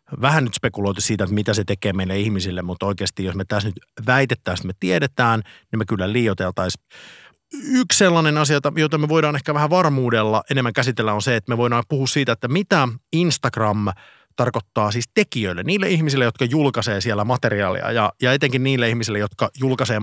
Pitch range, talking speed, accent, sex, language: 105-135 Hz, 180 wpm, native, male, Finnish